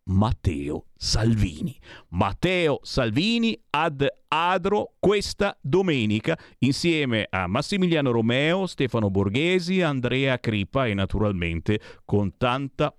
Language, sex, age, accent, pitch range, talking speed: Italian, male, 40-59, native, 105-150 Hz, 90 wpm